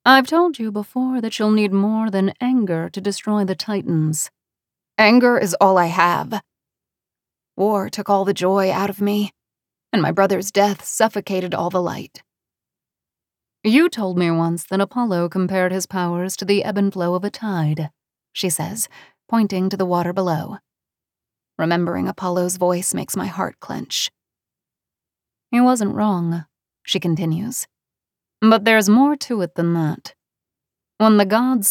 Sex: female